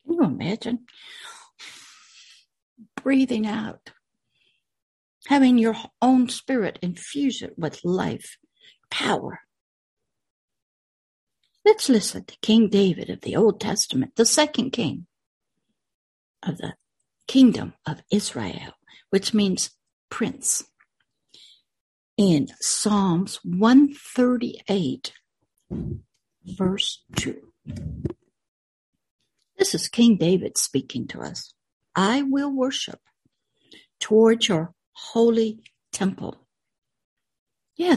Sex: female